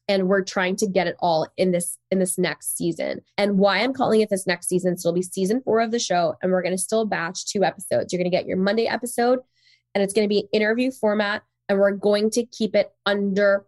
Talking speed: 255 wpm